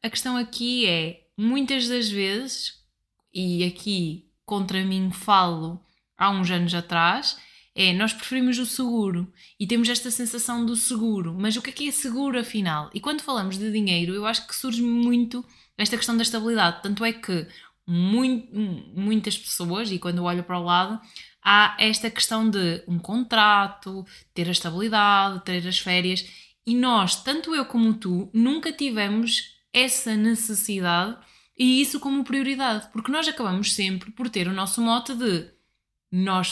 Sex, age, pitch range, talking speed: female, 20-39, 185-245 Hz, 160 wpm